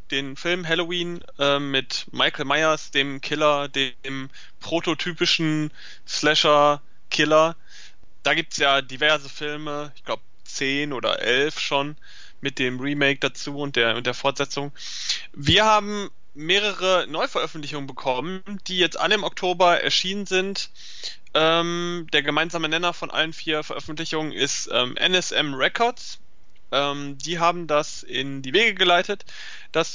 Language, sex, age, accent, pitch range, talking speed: German, male, 20-39, German, 140-175 Hz, 130 wpm